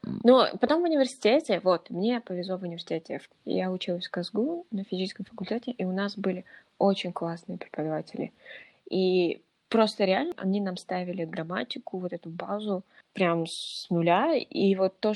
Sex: female